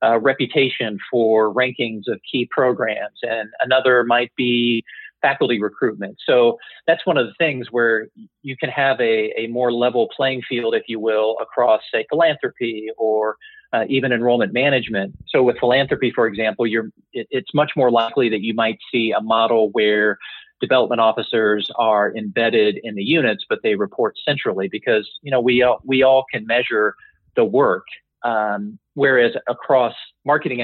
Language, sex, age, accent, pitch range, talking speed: English, male, 40-59, American, 110-140 Hz, 165 wpm